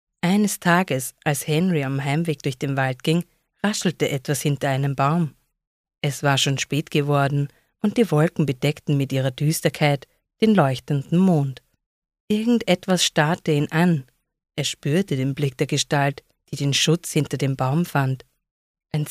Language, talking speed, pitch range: English, 150 wpm, 145-175 Hz